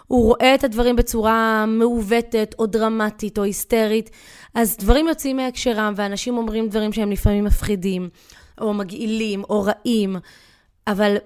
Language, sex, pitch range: Hebrew, female, 200-250 Hz